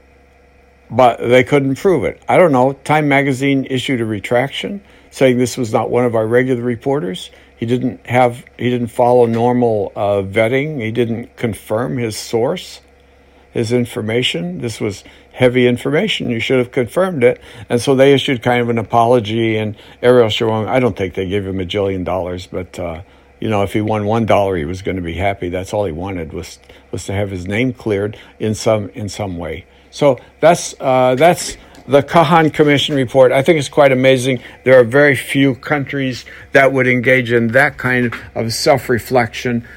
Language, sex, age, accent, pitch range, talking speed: English, male, 60-79, American, 95-130 Hz, 185 wpm